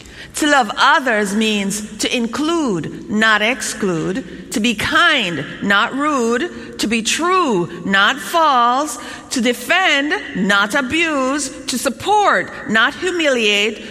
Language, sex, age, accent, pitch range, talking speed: English, female, 50-69, American, 200-275 Hz, 110 wpm